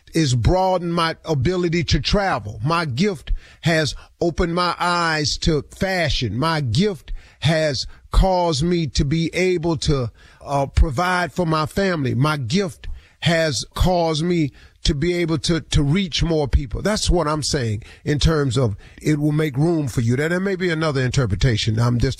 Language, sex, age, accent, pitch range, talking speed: English, male, 40-59, American, 115-155 Hz, 170 wpm